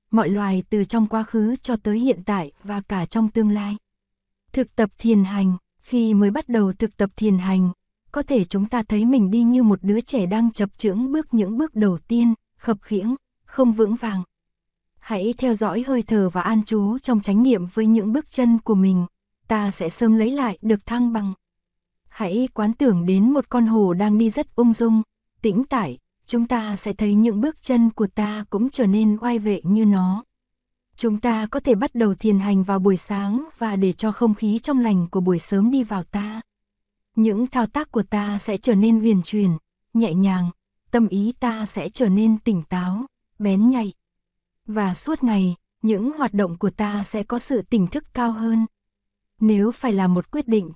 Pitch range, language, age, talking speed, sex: 200-235 Hz, Vietnamese, 20-39, 205 wpm, female